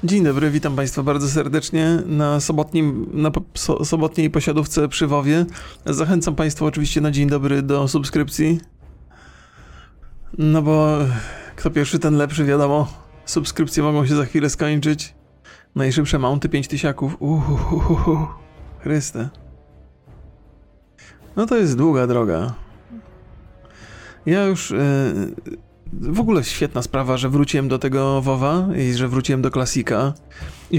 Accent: native